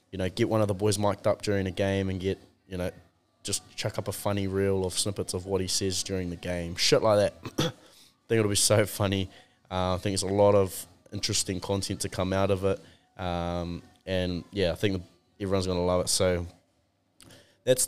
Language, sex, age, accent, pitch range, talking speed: English, male, 20-39, Australian, 90-105 Hz, 220 wpm